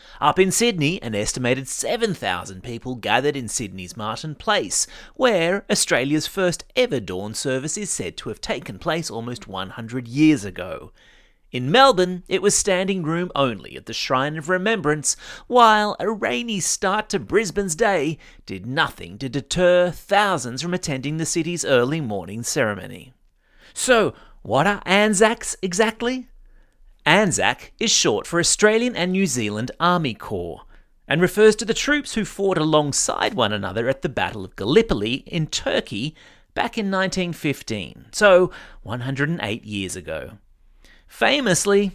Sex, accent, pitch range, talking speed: male, Australian, 125-200 Hz, 140 wpm